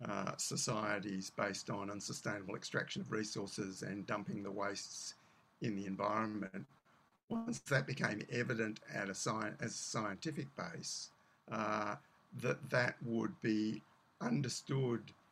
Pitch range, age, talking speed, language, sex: 110-140 Hz, 60-79, 115 wpm, English, male